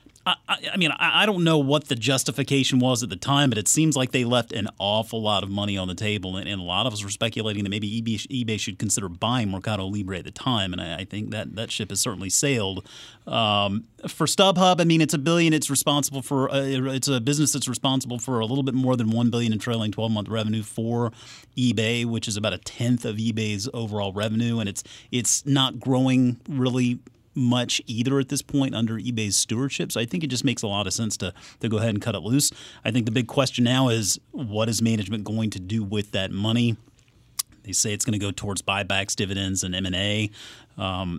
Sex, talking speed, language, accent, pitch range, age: male, 220 wpm, English, American, 100-130 Hz, 30-49